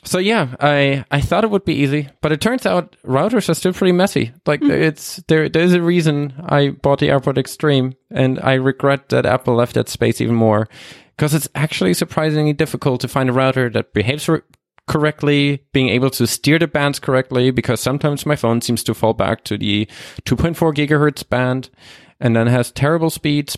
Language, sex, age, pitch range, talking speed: English, male, 20-39, 120-150 Hz, 200 wpm